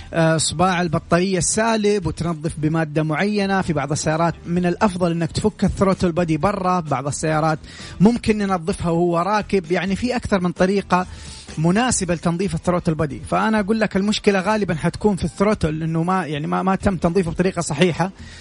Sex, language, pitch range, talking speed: male, English, 155-195 Hz, 155 wpm